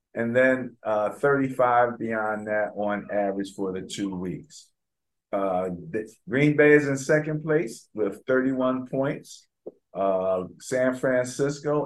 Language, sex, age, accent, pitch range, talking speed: English, male, 50-69, American, 110-150 Hz, 130 wpm